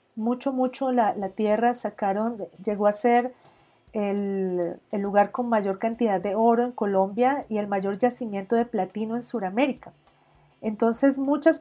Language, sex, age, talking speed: Spanish, female, 40-59, 150 wpm